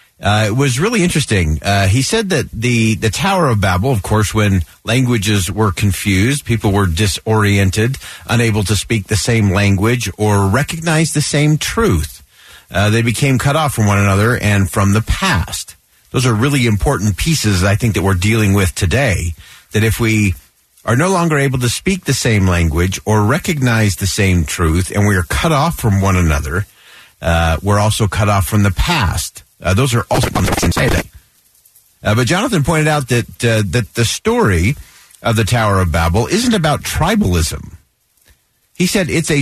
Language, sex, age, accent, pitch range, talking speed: English, male, 50-69, American, 100-130 Hz, 180 wpm